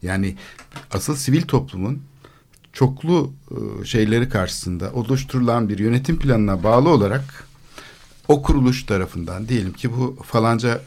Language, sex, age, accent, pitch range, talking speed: Turkish, male, 60-79, native, 100-135 Hz, 110 wpm